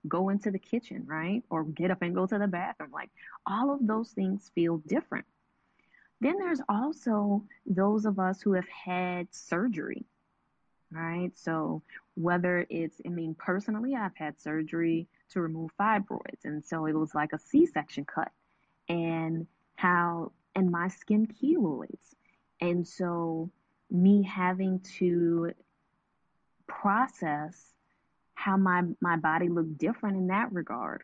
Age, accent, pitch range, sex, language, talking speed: 20-39, American, 170-205 Hz, female, English, 140 wpm